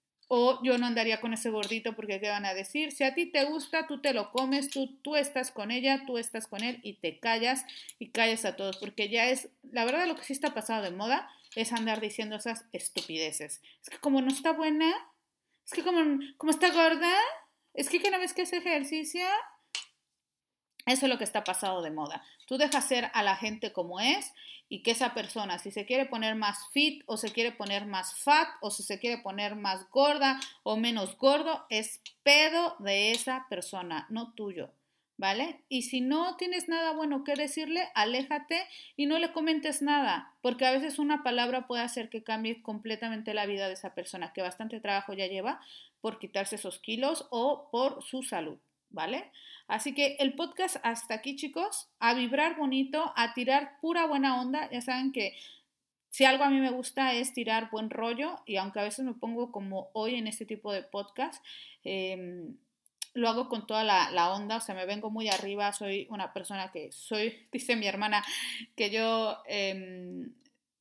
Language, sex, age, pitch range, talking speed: Spanish, female, 40-59, 210-285 Hz, 195 wpm